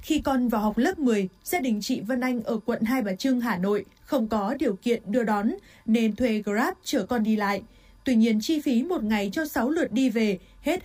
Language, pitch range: Vietnamese, 220-270 Hz